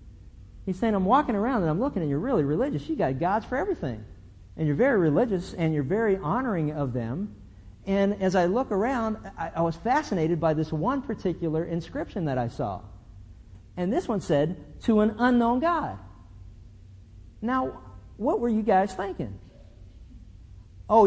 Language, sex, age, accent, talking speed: English, male, 50-69, American, 170 wpm